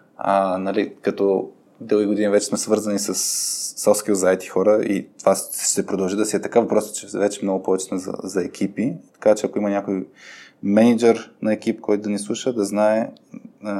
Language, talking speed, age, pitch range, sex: Bulgarian, 185 wpm, 20-39, 95-110 Hz, male